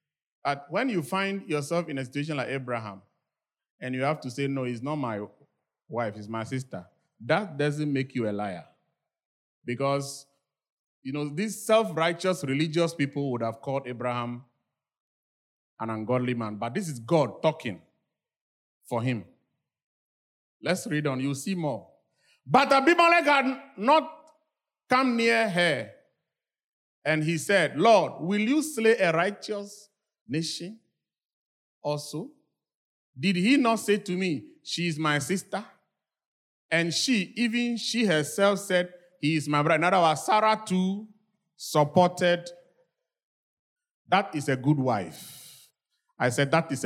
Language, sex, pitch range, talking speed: English, male, 135-205 Hz, 140 wpm